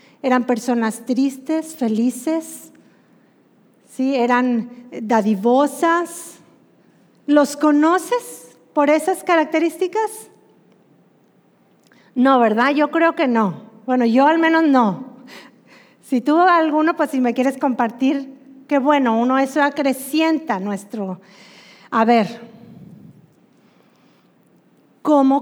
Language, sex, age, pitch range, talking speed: Spanish, female, 40-59, 250-325 Hz, 95 wpm